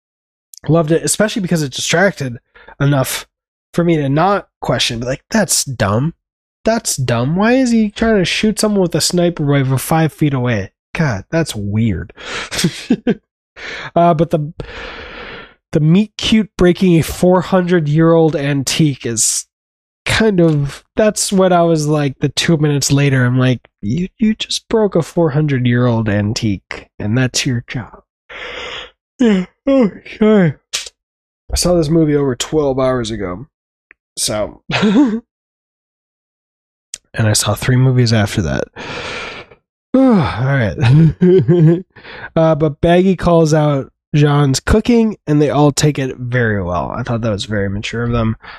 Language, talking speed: English, 145 wpm